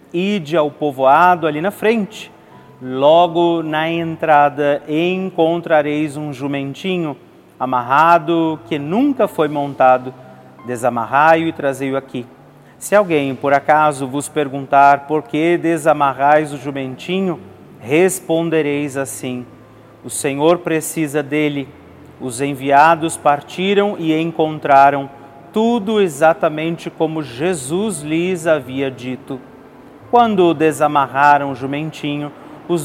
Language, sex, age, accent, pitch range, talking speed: Portuguese, male, 40-59, Brazilian, 135-170 Hz, 100 wpm